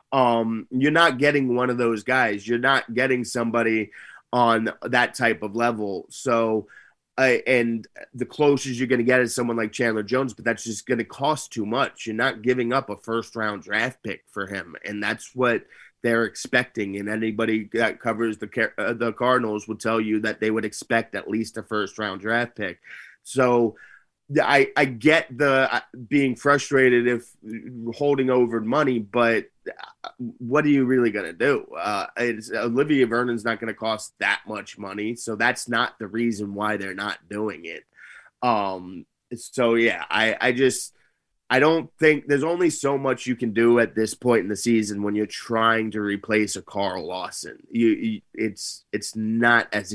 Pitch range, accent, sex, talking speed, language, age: 110-125 Hz, American, male, 185 wpm, English, 30-49